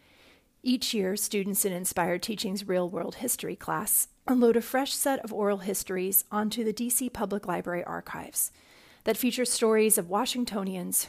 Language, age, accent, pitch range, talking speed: English, 40-59, American, 185-230 Hz, 150 wpm